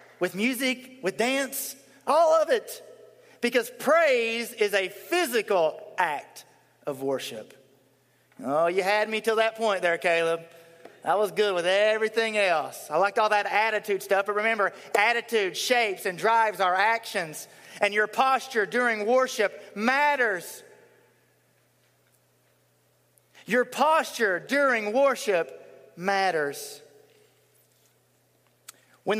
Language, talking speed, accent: English, 115 wpm, American